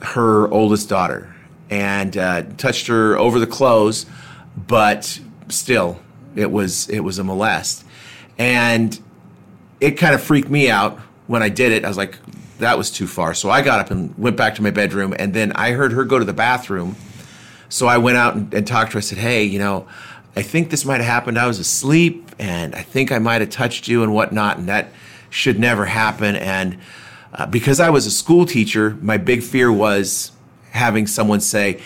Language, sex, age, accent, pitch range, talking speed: English, male, 40-59, American, 100-125 Hz, 200 wpm